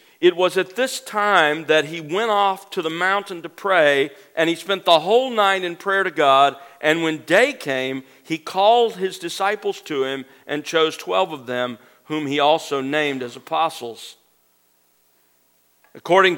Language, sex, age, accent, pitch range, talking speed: English, male, 50-69, American, 135-185 Hz, 170 wpm